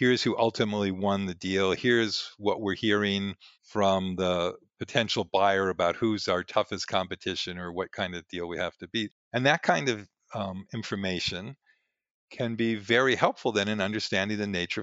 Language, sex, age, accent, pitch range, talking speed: English, male, 50-69, American, 95-115 Hz, 175 wpm